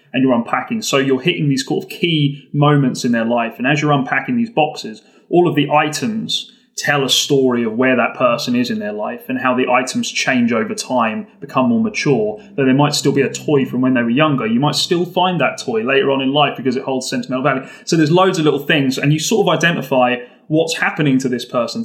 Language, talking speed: English, 240 wpm